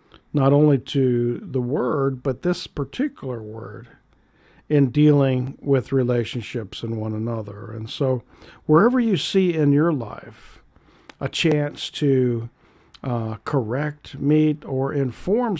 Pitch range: 120-150 Hz